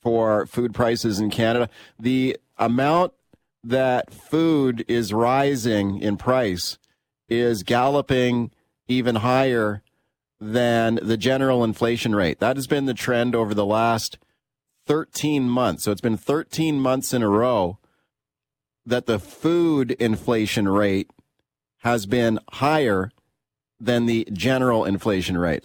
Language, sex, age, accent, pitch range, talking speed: English, male, 40-59, American, 105-130 Hz, 125 wpm